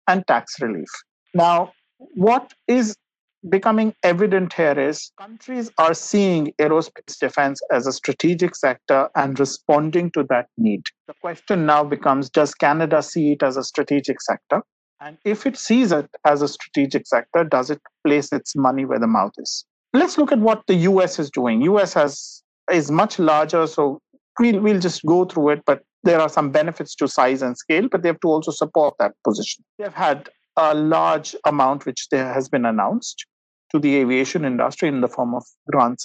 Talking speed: 185 wpm